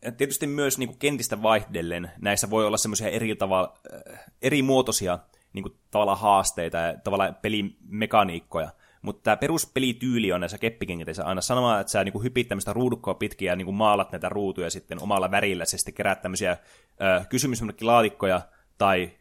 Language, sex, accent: Finnish, male, native